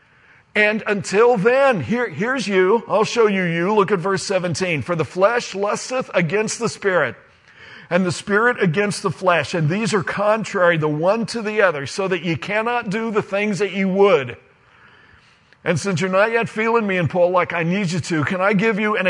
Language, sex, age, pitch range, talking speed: English, male, 50-69, 180-230 Hz, 200 wpm